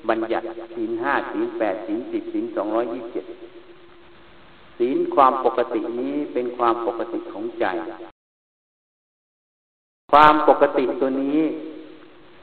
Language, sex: Thai, male